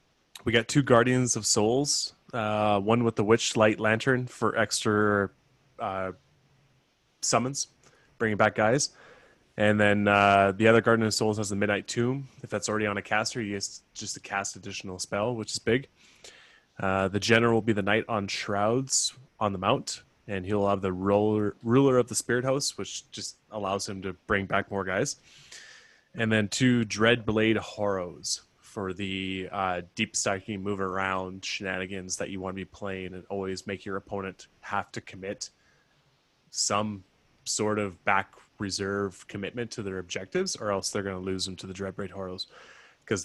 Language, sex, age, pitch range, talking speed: English, male, 20-39, 100-115 Hz, 175 wpm